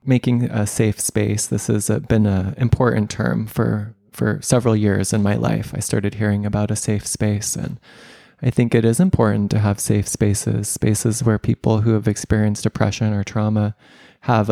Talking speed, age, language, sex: 180 wpm, 20-39, English, male